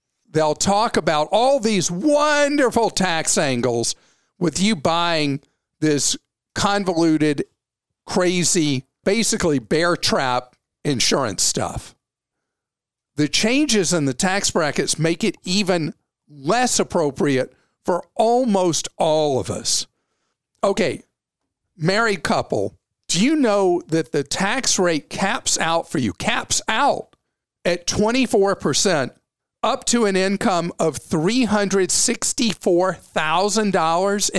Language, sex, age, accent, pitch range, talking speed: English, male, 50-69, American, 155-215 Hz, 105 wpm